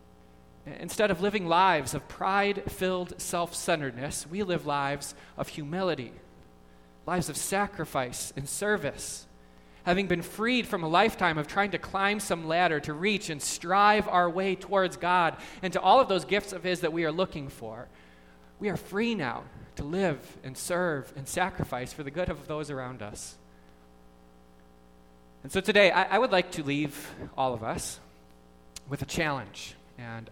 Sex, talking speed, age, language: male, 165 wpm, 20-39, English